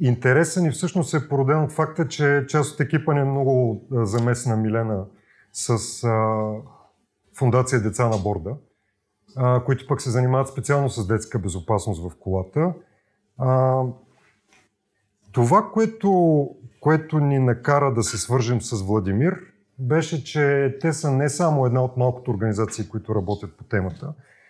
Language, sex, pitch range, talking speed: Bulgarian, male, 115-145 Hz, 135 wpm